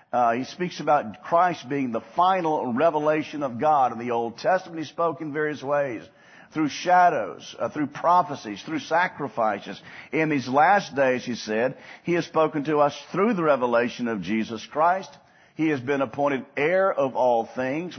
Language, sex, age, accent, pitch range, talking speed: English, male, 50-69, American, 125-175 Hz, 175 wpm